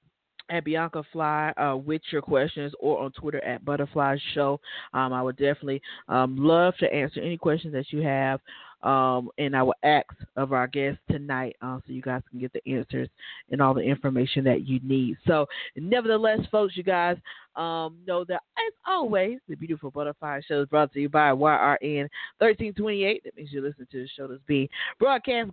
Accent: American